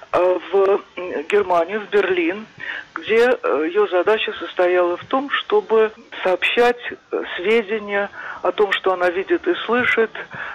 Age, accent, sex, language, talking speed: 50-69, native, male, Russian, 115 wpm